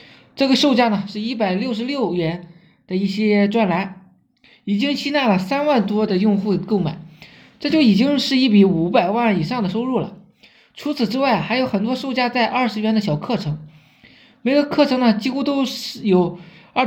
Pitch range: 195-255 Hz